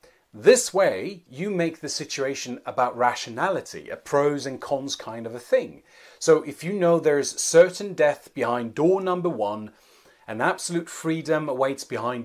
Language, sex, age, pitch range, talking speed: English, male, 40-59, 125-170 Hz, 160 wpm